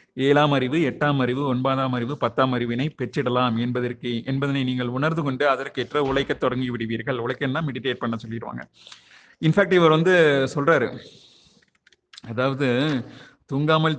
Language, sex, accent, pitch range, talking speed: Tamil, male, native, 125-150 Hz, 115 wpm